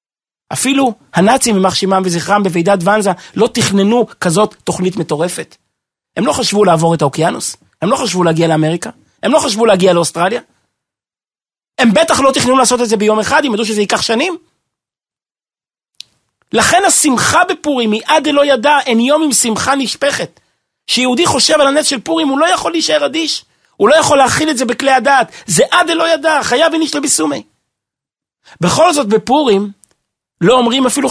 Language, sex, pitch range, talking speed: Hebrew, male, 175-270 Hz, 150 wpm